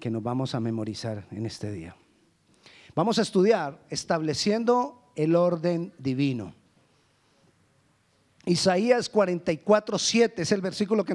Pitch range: 165-245 Hz